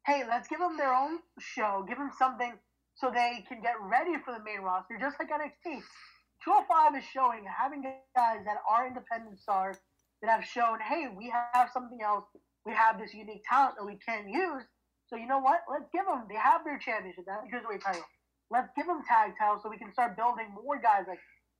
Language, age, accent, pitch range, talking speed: English, 20-39, American, 210-270 Hz, 215 wpm